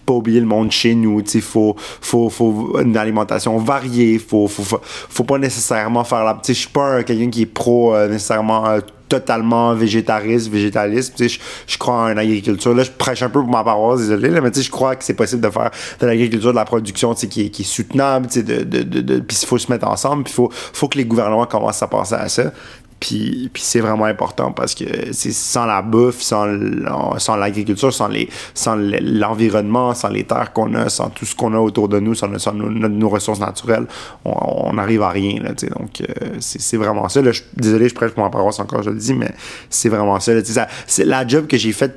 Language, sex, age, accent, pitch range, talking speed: French, male, 30-49, French, 105-120 Hz, 235 wpm